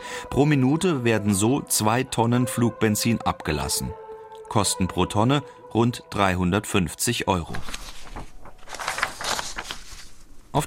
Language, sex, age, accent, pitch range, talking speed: German, male, 40-59, German, 95-125 Hz, 85 wpm